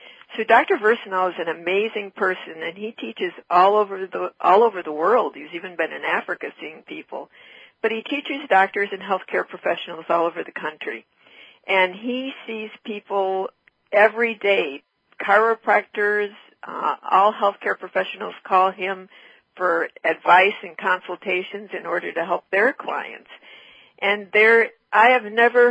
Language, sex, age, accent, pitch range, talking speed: English, female, 50-69, American, 180-225 Hz, 145 wpm